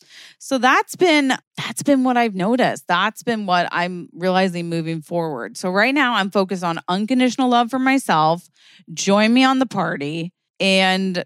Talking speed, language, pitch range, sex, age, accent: 165 wpm, English, 165-220 Hz, female, 20-39, American